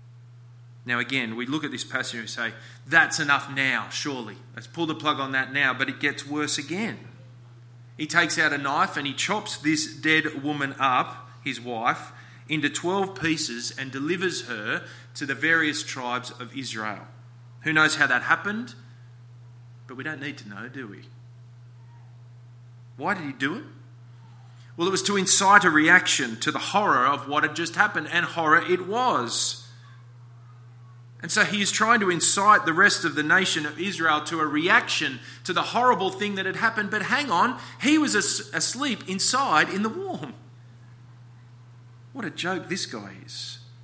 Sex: male